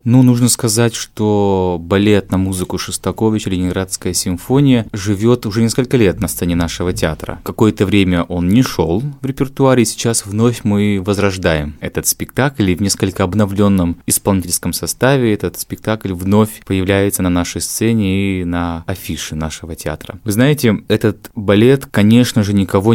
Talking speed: 150 wpm